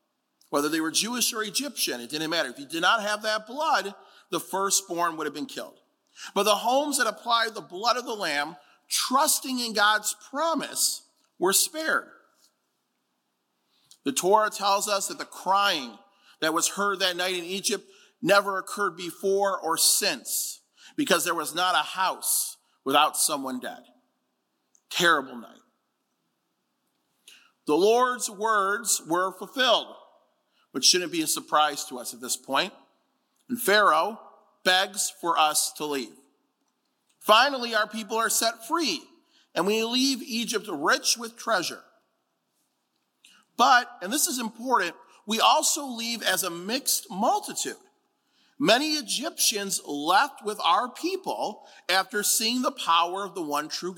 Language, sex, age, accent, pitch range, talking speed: English, male, 40-59, American, 185-265 Hz, 145 wpm